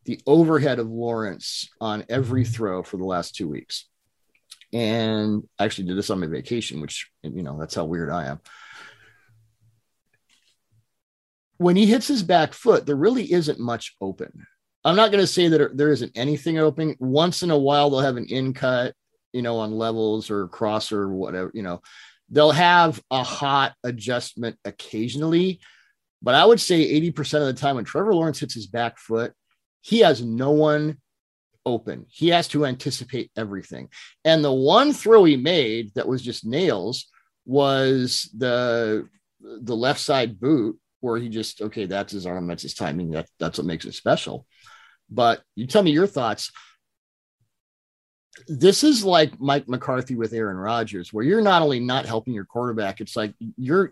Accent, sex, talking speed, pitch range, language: American, male, 175 wpm, 110-150 Hz, English